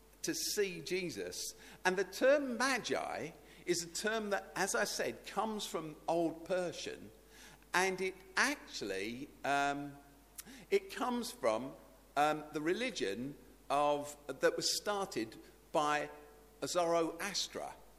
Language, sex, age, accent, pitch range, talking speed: English, male, 50-69, British, 145-225 Hz, 115 wpm